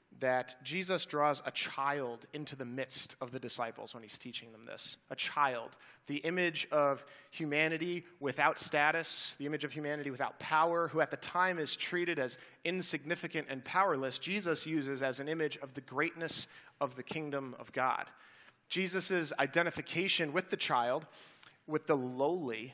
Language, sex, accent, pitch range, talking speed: English, male, American, 140-165 Hz, 160 wpm